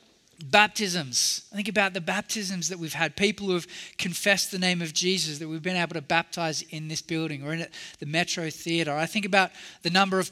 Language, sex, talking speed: English, male, 215 wpm